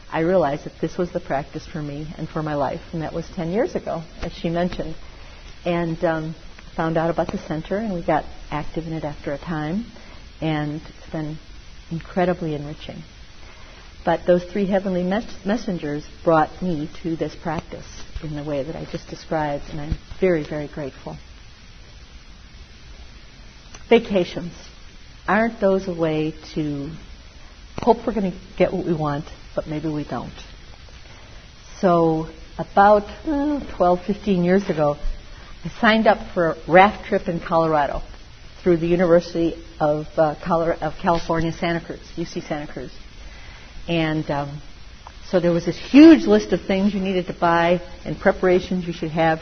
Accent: American